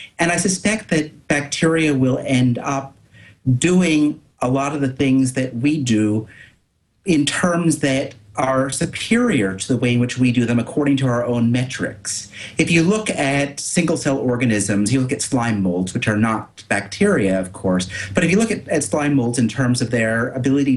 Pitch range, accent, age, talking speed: 110-150 Hz, American, 40-59, 185 wpm